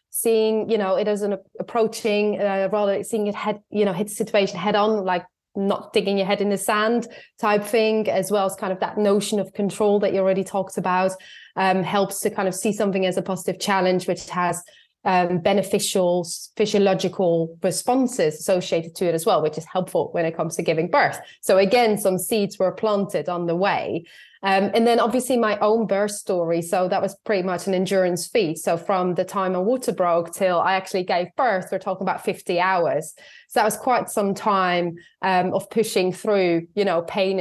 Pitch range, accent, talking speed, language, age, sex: 185-215 Hz, British, 205 wpm, English, 20-39, female